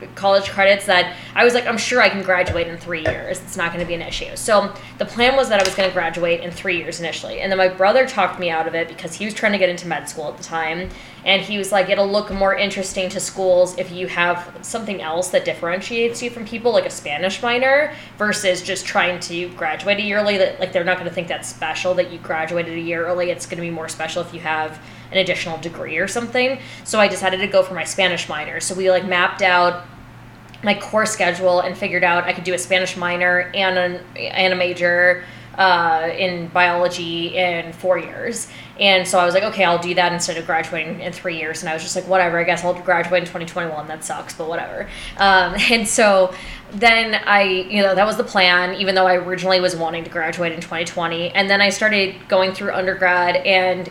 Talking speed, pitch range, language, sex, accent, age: 235 wpm, 175-195 Hz, English, female, American, 10-29